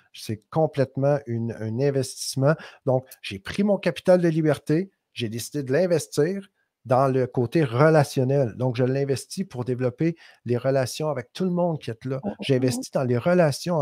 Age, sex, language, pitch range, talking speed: 50-69, male, French, 115-150 Hz, 160 wpm